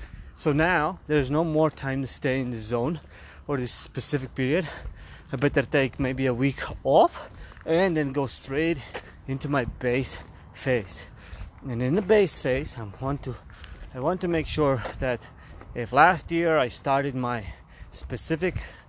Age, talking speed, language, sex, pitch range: 20-39, 160 wpm, English, male, 130-160 Hz